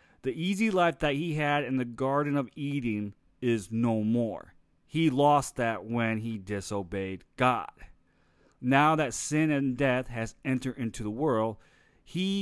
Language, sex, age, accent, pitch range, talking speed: English, male, 40-59, American, 105-140 Hz, 155 wpm